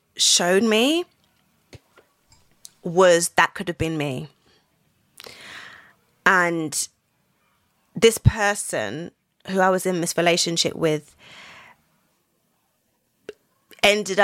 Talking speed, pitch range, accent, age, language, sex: 80 wpm, 160-190 Hz, British, 20-39, English, female